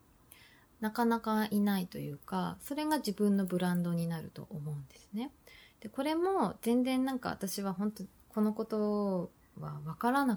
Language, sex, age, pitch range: Japanese, female, 20-39, 170-235 Hz